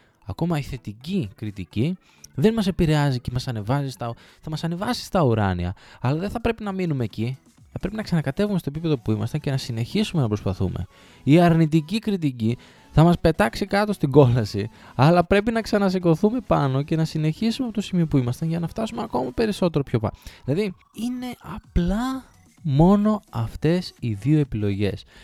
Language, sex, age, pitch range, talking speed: Greek, male, 20-39, 105-165 Hz, 170 wpm